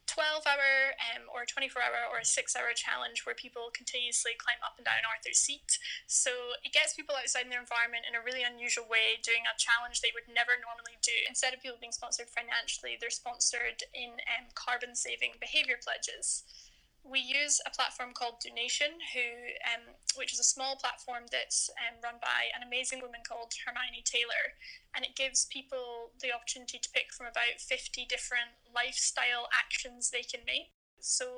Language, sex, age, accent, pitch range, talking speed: English, female, 10-29, British, 240-270 Hz, 175 wpm